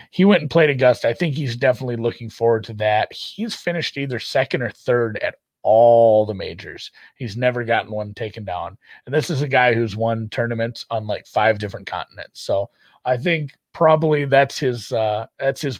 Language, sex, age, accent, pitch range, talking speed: English, male, 30-49, American, 110-130 Hz, 195 wpm